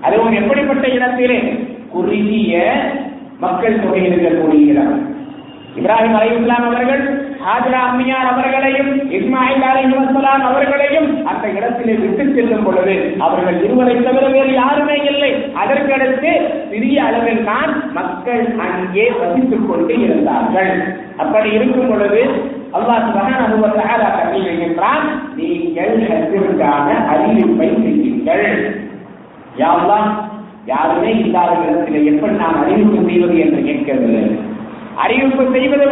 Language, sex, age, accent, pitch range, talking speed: English, male, 50-69, Indian, 220-280 Hz, 30 wpm